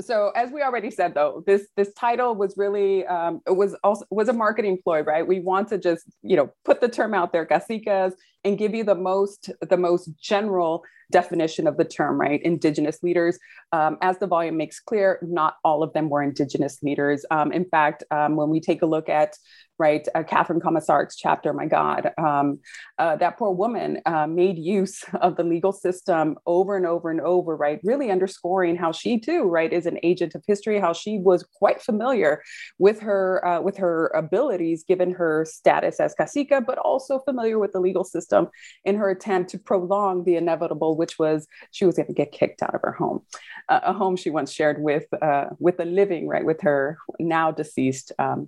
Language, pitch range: English, 160-200 Hz